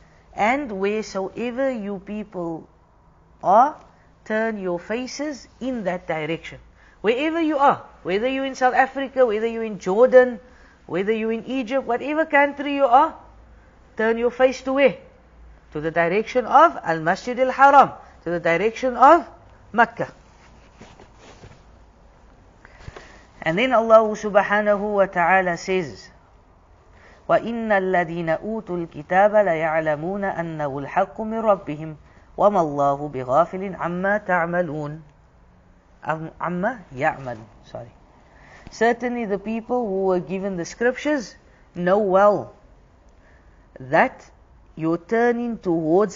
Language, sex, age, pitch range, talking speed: English, female, 50-69, 155-225 Hz, 110 wpm